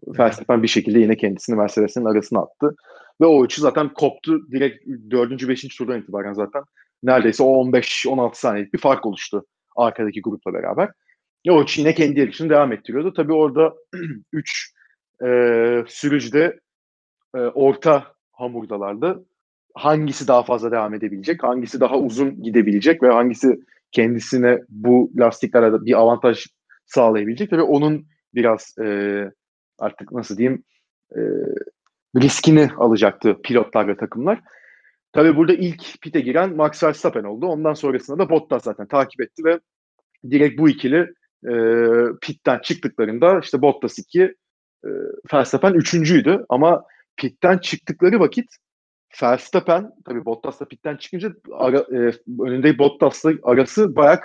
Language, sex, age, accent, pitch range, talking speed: Turkish, male, 40-59, native, 120-160 Hz, 135 wpm